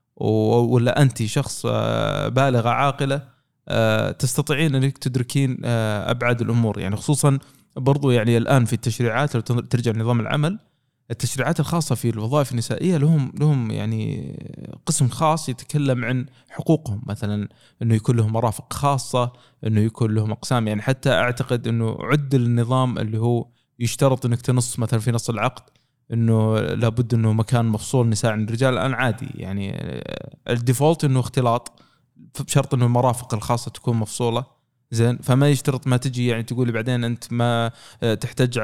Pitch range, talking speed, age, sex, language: 115-140 Hz, 140 wpm, 20-39, male, Arabic